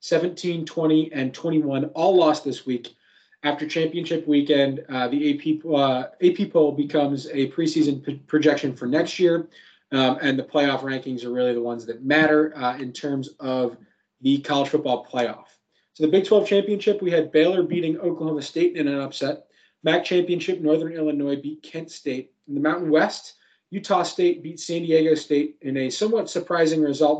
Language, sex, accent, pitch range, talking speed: English, male, American, 145-170 Hz, 175 wpm